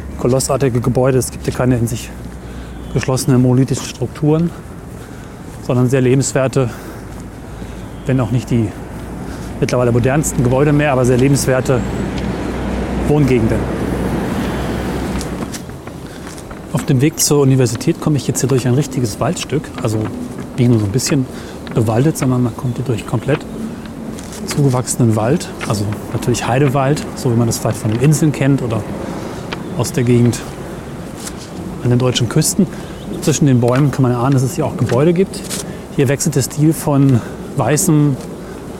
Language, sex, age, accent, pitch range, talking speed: German, male, 30-49, German, 125-150 Hz, 140 wpm